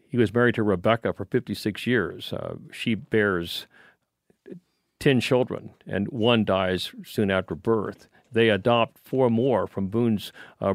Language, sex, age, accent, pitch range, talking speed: English, male, 50-69, American, 100-125 Hz, 145 wpm